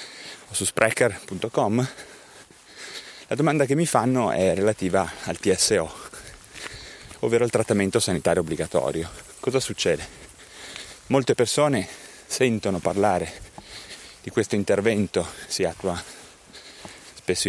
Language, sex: Italian, male